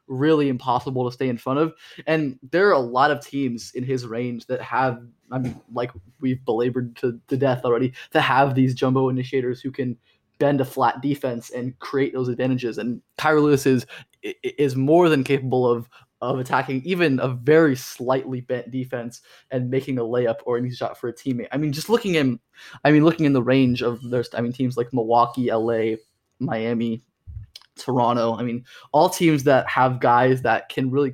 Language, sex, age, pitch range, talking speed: English, male, 20-39, 120-140 Hz, 195 wpm